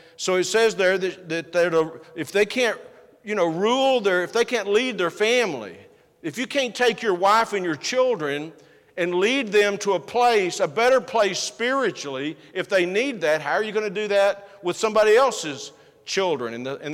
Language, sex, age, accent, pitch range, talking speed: English, male, 50-69, American, 155-200 Hz, 190 wpm